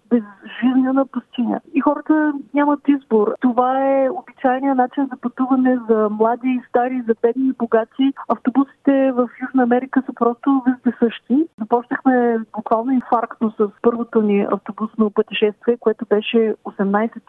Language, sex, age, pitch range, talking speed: Bulgarian, female, 30-49, 220-260 Hz, 130 wpm